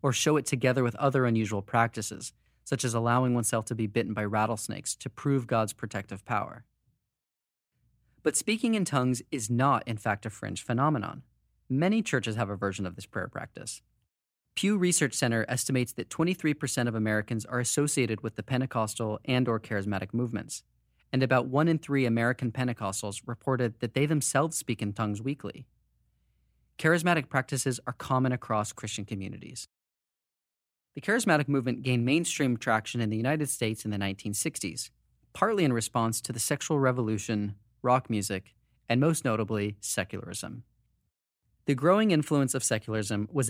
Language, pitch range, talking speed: English, 110-135 Hz, 155 wpm